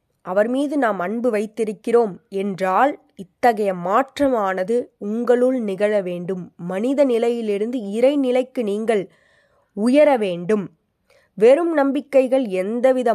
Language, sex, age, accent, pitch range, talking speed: Tamil, female, 20-39, native, 200-270 Hz, 90 wpm